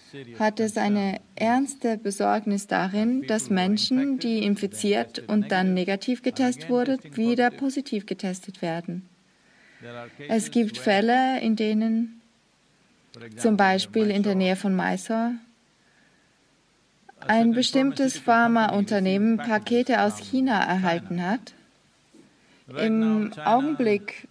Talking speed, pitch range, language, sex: 100 wpm, 190-230 Hz, English, female